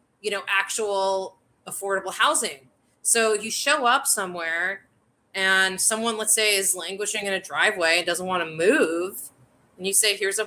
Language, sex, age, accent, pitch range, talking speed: English, female, 30-49, American, 185-235 Hz, 165 wpm